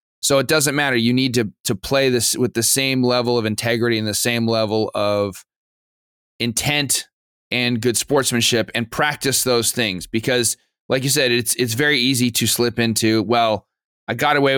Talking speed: 180 wpm